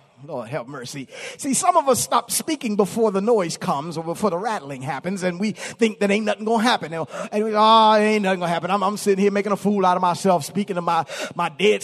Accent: American